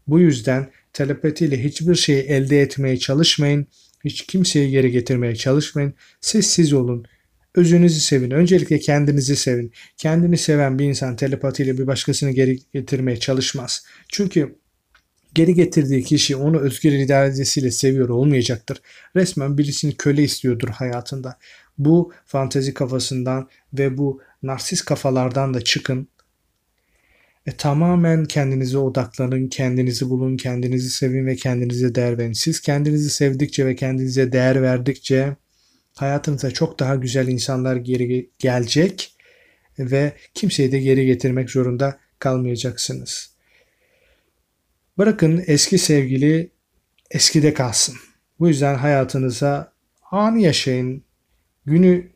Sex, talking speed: male, 110 wpm